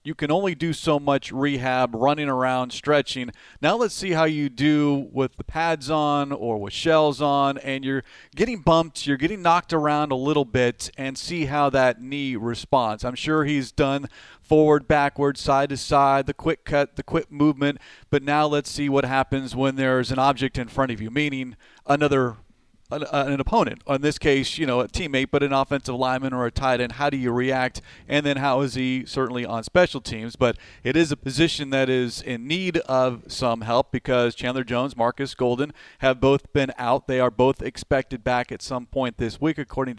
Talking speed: 200 wpm